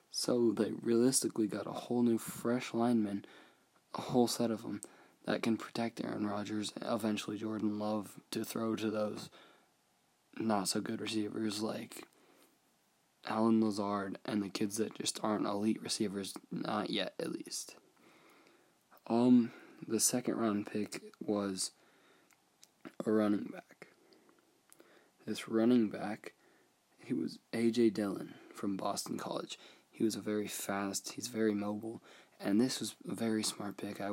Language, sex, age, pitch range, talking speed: English, male, 20-39, 100-110 Hz, 135 wpm